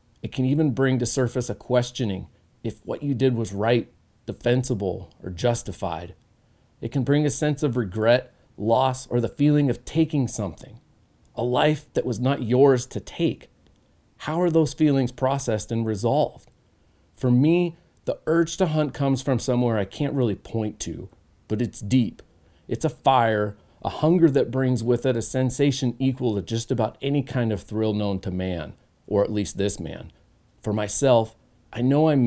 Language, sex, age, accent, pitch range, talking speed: English, male, 40-59, American, 105-130 Hz, 175 wpm